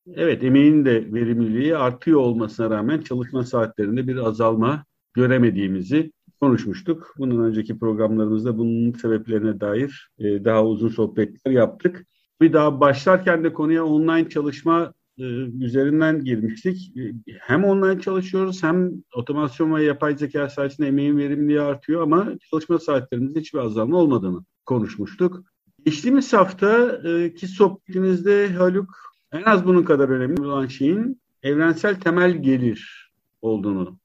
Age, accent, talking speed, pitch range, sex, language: 50-69, native, 120 wpm, 120-175 Hz, male, Turkish